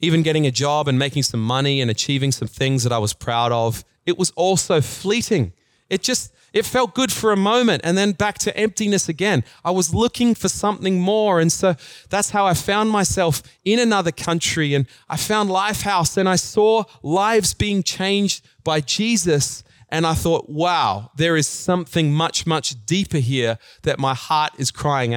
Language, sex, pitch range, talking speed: English, male, 130-195 Hz, 190 wpm